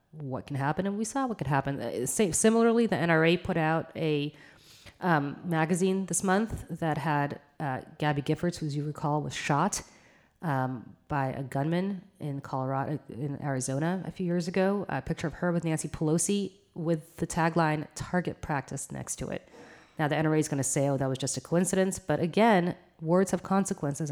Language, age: English, 30-49